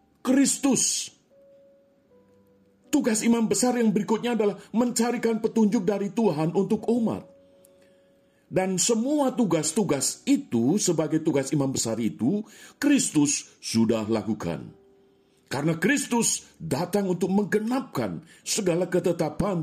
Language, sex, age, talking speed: Indonesian, male, 50-69, 100 wpm